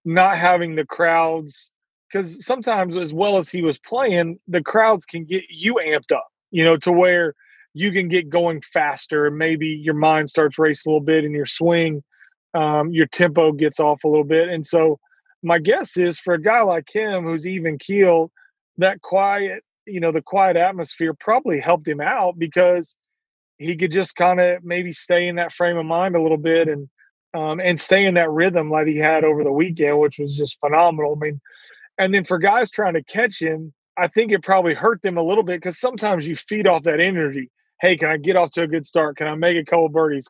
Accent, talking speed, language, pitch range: American, 215 wpm, English, 155-180 Hz